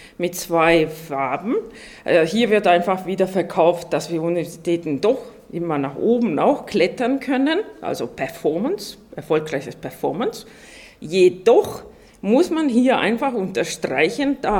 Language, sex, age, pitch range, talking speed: German, female, 40-59, 165-230 Hz, 120 wpm